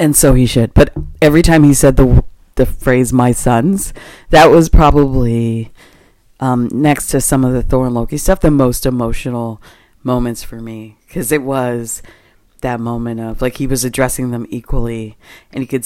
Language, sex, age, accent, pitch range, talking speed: English, female, 40-59, American, 115-130 Hz, 180 wpm